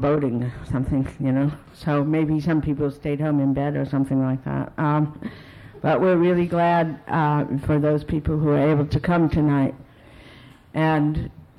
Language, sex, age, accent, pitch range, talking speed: English, female, 60-79, American, 140-170 Hz, 165 wpm